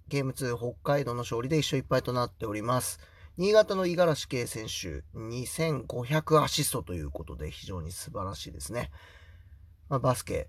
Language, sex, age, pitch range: Japanese, male, 30-49, 85-140 Hz